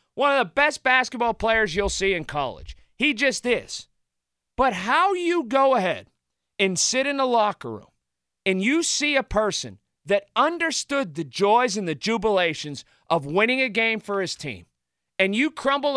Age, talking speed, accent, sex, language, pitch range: 40-59, 175 wpm, American, male, English, 145-235 Hz